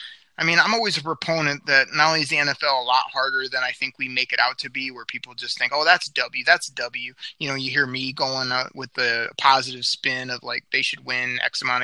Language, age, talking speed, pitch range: English, 20-39, 260 wpm, 130-150 Hz